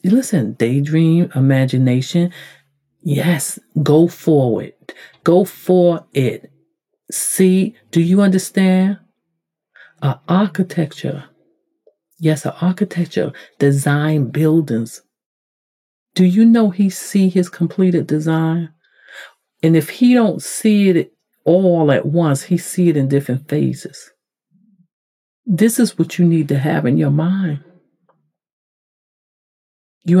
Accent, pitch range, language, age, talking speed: American, 150-190 Hz, English, 50-69, 110 wpm